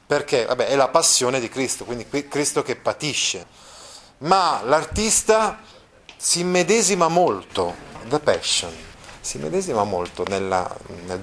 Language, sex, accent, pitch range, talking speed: Italian, male, native, 115-175 Hz, 125 wpm